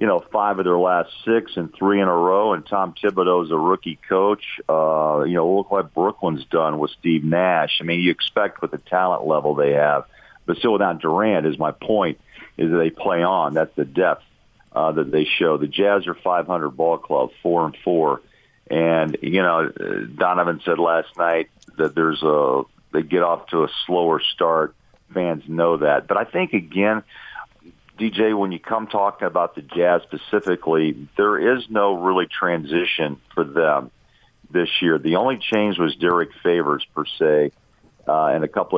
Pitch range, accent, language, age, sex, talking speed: 80-95 Hz, American, English, 50-69, male, 185 wpm